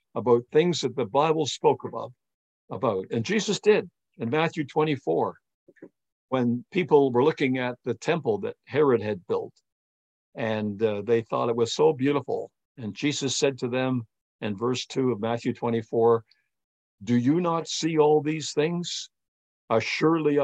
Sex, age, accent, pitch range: male, 60-79, American, 115-145 Hz